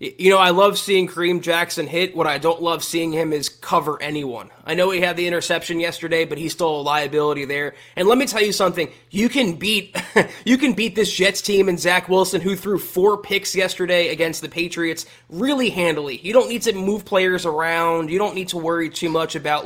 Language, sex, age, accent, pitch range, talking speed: English, male, 20-39, American, 160-190 Hz, 225 wpm